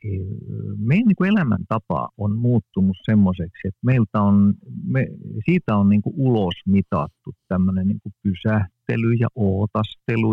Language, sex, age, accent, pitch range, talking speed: Finnish, male, 50-69, native, 100-120 Hz, 115 wpm